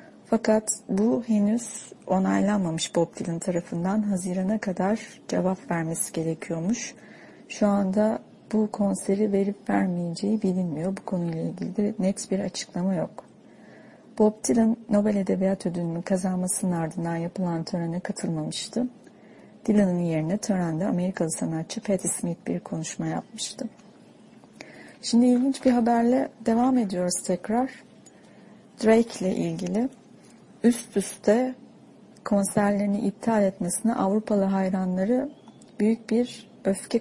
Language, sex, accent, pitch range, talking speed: English, female, Turkish, 185-225 Hz, 105 wpm